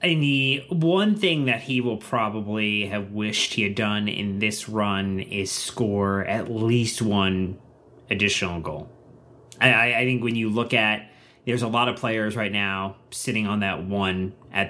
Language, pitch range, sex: English, 100-125 Hz, male